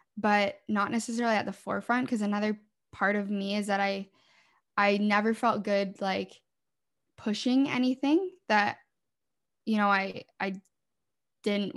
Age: 10-29